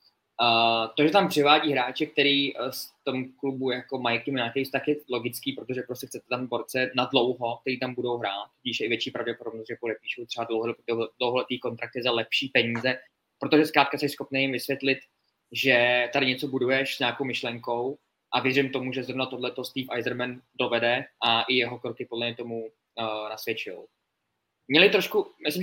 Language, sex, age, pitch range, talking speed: Czech, male, 20-39, 120-140 Hz, 185 wpm